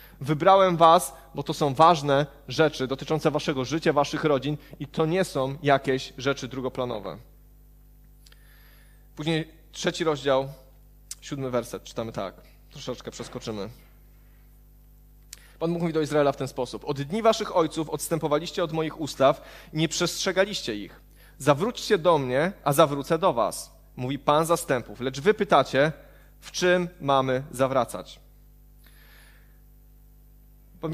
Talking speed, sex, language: 125 wpm, male, Polish